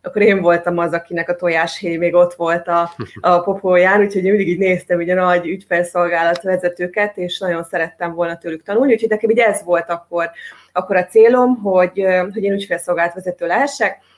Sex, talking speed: female, 175 wpm